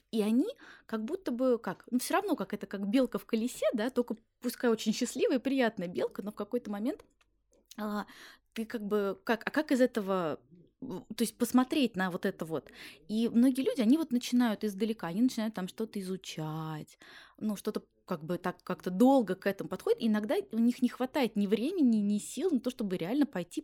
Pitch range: 185-245 Hz